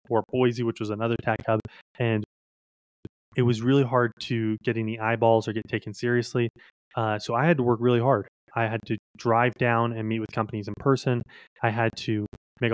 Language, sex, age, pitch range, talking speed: English, male, 20-39, 110-120 Hz, 205 wpm